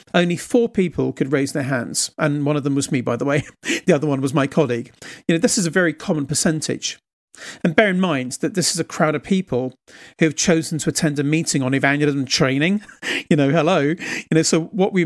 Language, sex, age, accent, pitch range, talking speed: English, male, 40-59, British, 150-185 Hz, 235 wpm